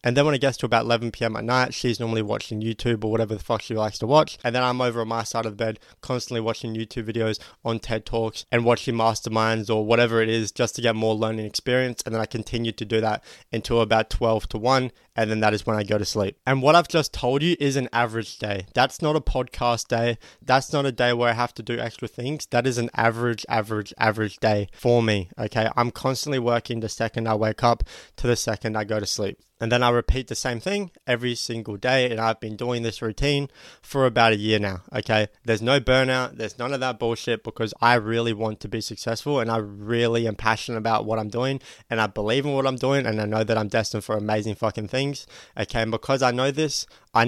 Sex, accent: male, Australian